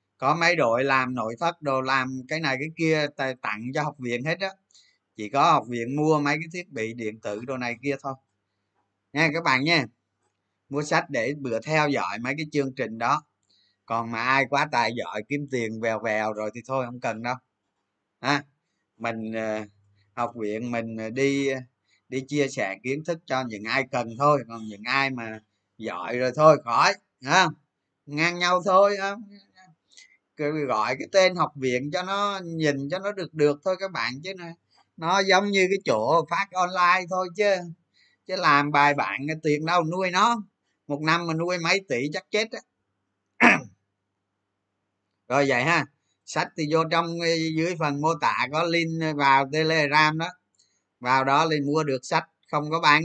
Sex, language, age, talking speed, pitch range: male, Vietnamese, 20-39, 180 wpm, 110-160 Hz